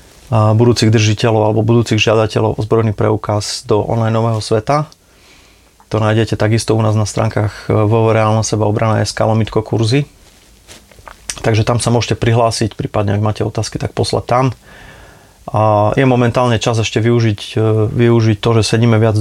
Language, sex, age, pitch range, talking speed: Slovak, male, 30-49, 105-120 Hz, 155 wpm